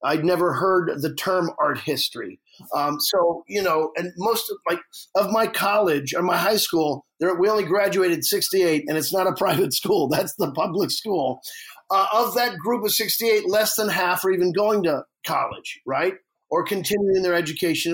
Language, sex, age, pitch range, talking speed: English, male, 40-59, 175-235 Hz, 180 wpm